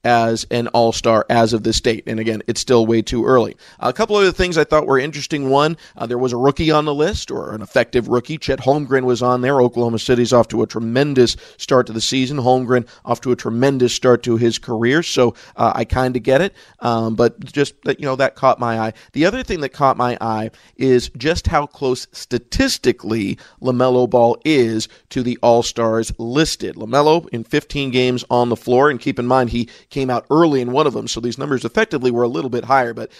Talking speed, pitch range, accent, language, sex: 225 wpm, 115-135 Hz, American, English, male